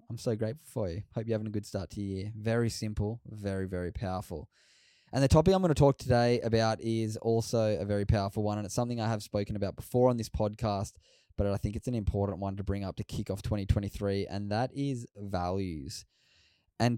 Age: 10-29